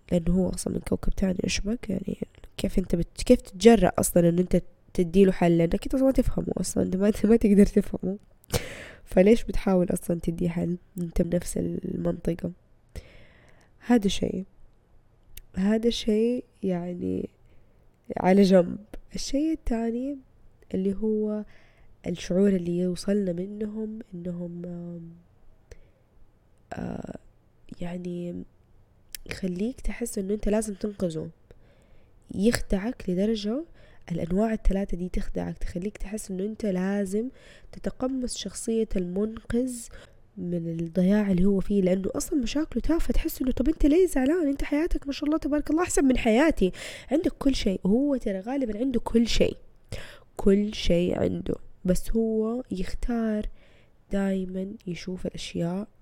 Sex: female